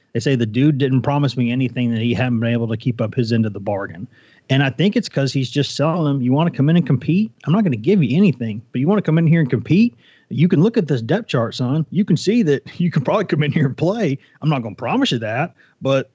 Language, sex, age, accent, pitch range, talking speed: English, male, 30-49, American, 130-185 Hz, 300 wpm